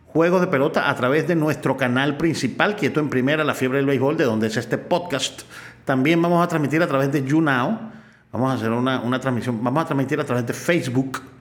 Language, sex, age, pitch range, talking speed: Spanish, male, 40-59, 130-175 Hz, 220 wpm